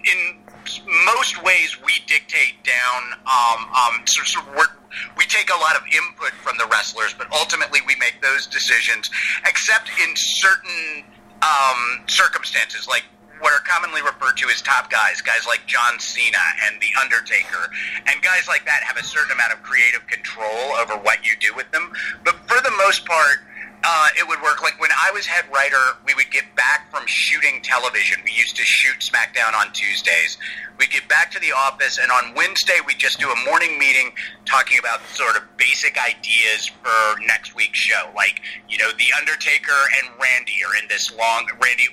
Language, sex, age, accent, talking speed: English, male, 30-49, American, 180 wpm